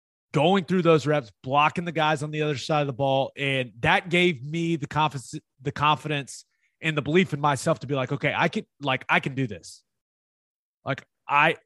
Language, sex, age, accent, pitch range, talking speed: English, male, 30-49, American, 130-165 Hz, 205 wpm